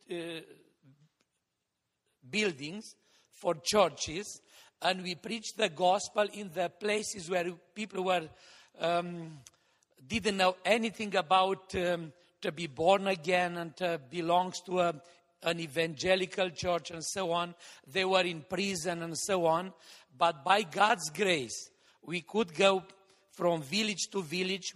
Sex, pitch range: male, 170-200 Hz